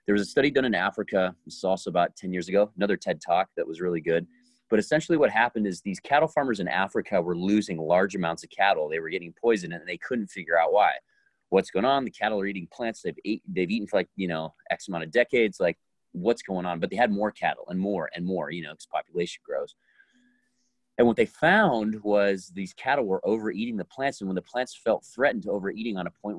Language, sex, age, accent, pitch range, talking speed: English, male, 30-49, American, 90-140 Hz, 245 wpm